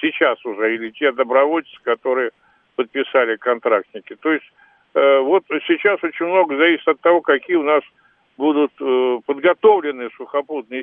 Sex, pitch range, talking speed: male, 135-190 Hz, 140 wpm